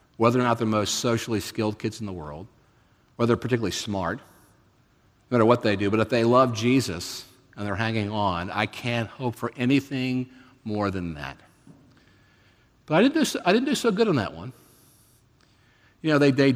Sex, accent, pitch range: male, American, 110-135 Hz